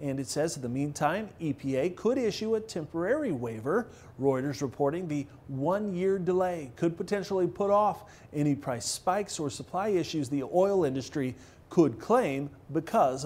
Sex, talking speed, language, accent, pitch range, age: male, 150 wpm, English, American, 140-200 Hz, 30-49